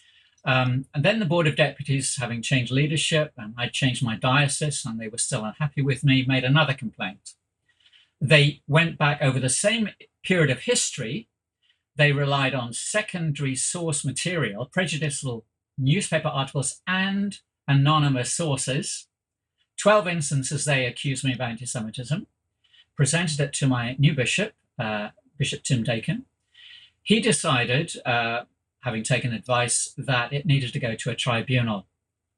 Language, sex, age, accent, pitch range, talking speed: English, male, 50-69, British, 120-150 Hz, 145 wpm